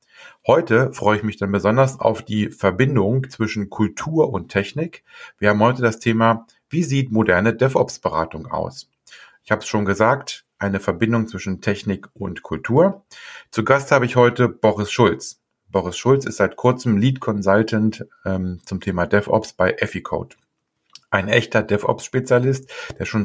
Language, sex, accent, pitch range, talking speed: German, male, German, 100-120 Hz, 150 wpm